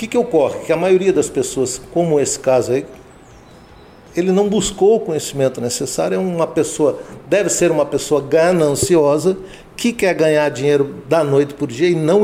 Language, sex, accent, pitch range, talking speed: Portuguese, male, Brazilian, 140-195 Hz, 175 wpm